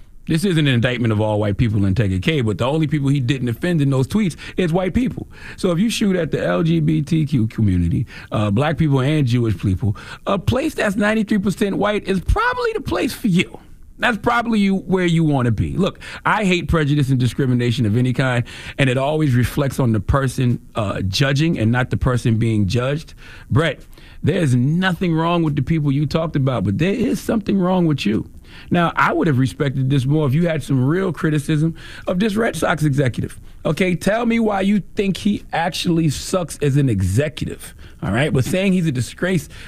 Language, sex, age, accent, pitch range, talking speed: English, male, 40-59, American, 125-190 Hz, 205 wpm